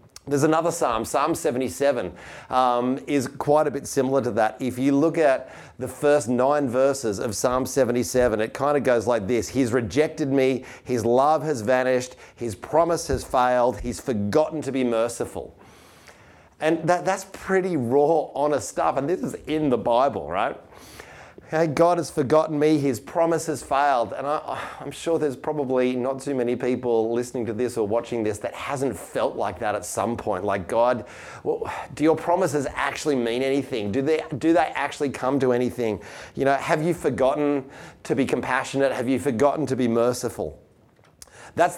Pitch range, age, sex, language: 125-150 Hz, 30-49, male, English